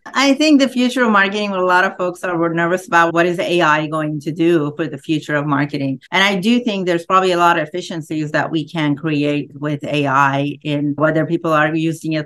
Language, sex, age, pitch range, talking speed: English, female, 40-59, 150-175 Hz, 230 wpm